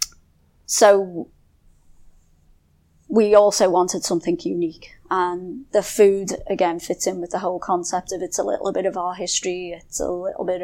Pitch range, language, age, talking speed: 170-185 Hz, English, 30-49, 160 wpm